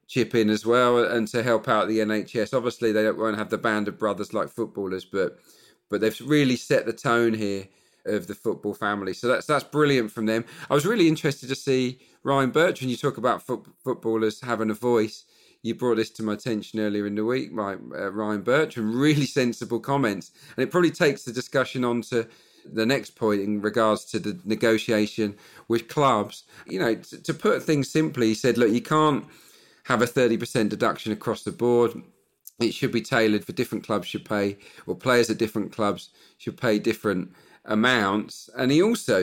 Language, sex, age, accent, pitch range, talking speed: English, male, 40-59, British, 110-130 Hz, 200 wpm